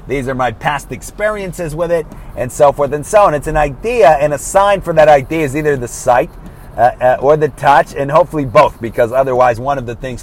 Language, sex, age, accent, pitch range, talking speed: English, male, 30-49, American, 120-150 Hz, 235 wpm